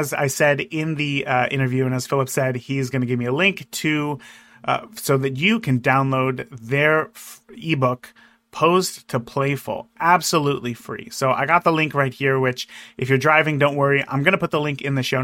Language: English